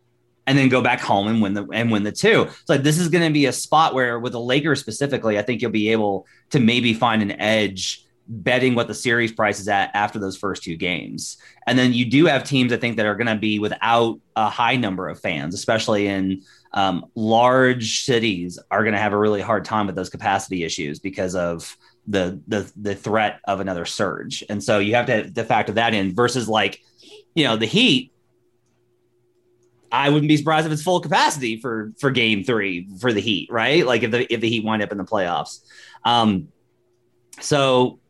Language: English